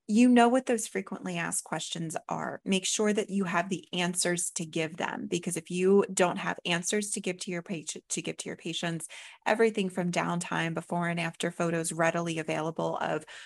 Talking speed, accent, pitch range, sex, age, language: 180 wpm, American, 170-205 Hz, female, 20-39, English